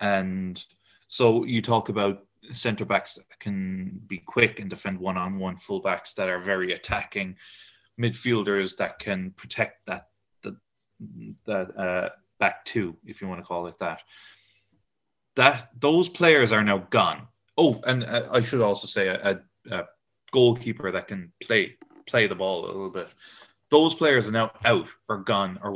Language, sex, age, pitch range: English, male, 30-49, 100-130 Hz